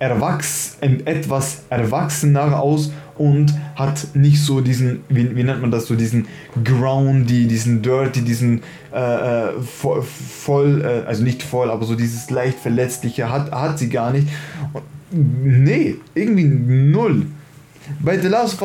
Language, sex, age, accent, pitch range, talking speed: German, male, 10-29, German, 130-150 Hz, 140 wpm